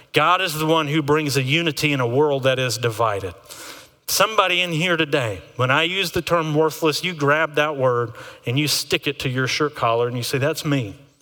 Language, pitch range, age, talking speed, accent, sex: English, 135-185 Hz, 40-59, 220 wpm, American, male